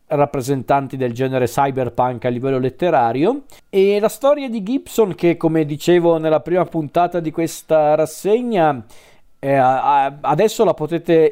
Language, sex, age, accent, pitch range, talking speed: Italian, male, 40-59, native, 130-155 Hz, 135 wpm